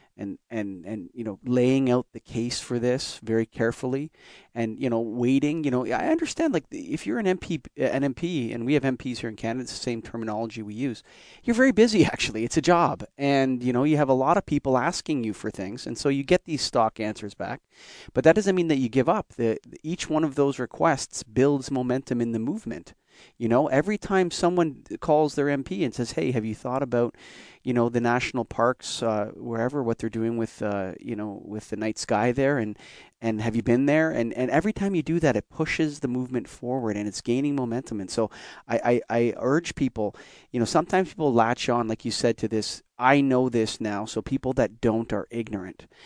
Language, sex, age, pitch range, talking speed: English, male, 30-49, 115-145 Hz, 225 wpm